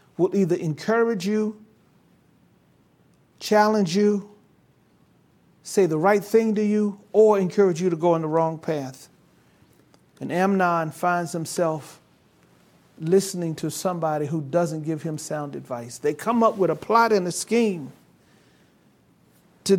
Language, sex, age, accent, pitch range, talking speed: English, male, 50-69, American, 160-210 Hz, 135 wpm